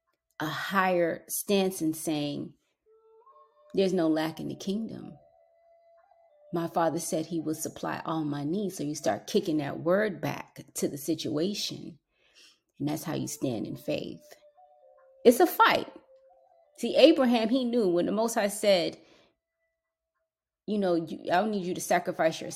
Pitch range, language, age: 160-240 Hz, English, 30-49